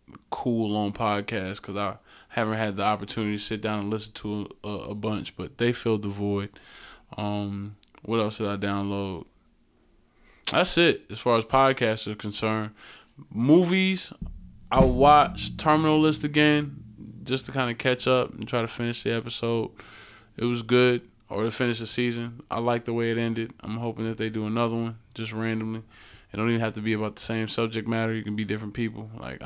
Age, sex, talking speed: 20-39, male, 195 wpm